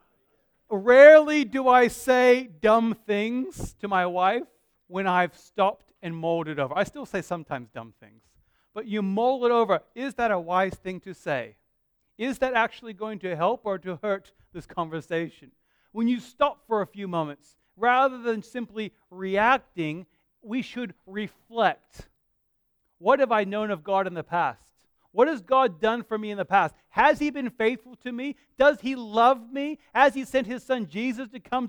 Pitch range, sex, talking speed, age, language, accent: 185-245 Hz, male, 180 wpm, 40-59, English, American